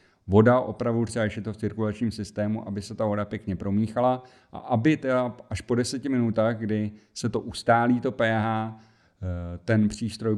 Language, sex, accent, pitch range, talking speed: Czech, male, native, 100-115 Hz, 170 wpm